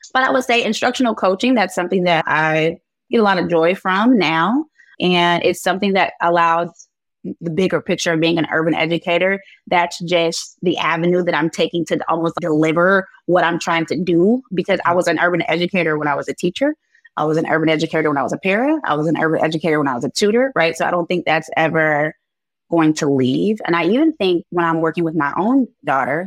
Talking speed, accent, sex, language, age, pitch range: 220 wpm, American, female, English, 20-39, 160-200 Hz